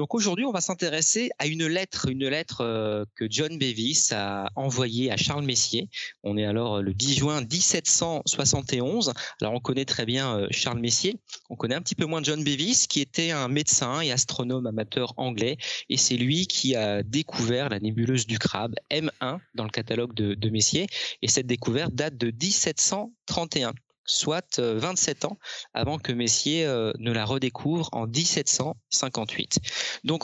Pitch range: 120-155 Hz